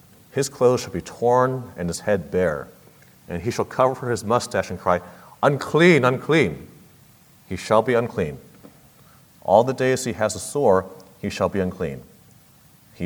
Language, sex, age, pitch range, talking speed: English, male, 40-59, 95-125 Hz, 165 wpm